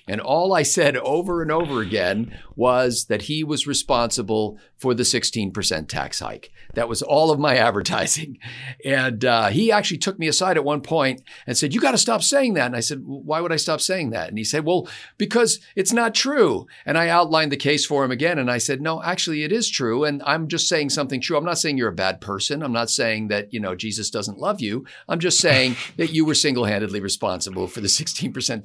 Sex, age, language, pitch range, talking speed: male, 50-69, English, 115-160 Hz, 230 wpm